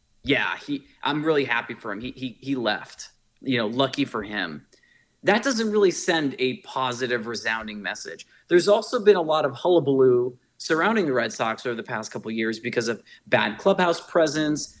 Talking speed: 185 wpm